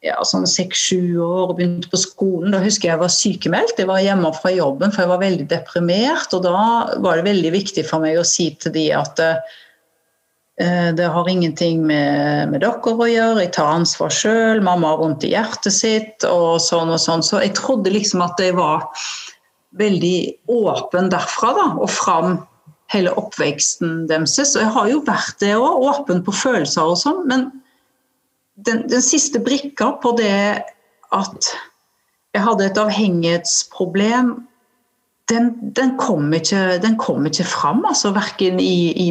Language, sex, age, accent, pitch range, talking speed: Swedish, female, 50-69, native, 170-225 Hz, 170 wpm